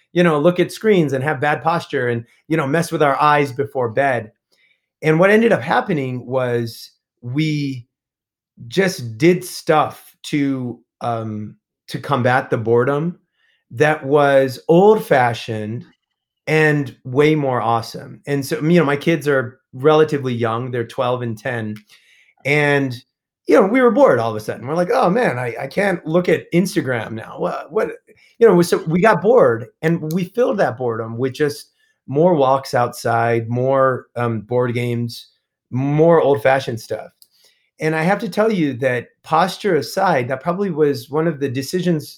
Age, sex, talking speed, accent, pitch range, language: 30-49, male, 170 wpm, American, 120-165 Hz, English